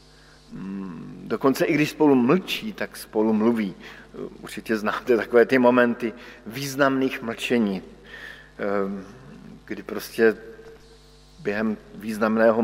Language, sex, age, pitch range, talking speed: Slovak, male, 50-69, 115-140 Hz, 90 wpm